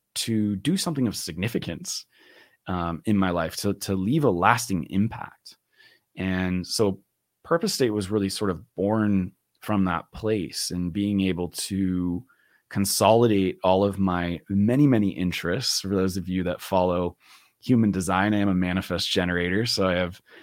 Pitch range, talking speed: 90-110 Hz, 160 wpm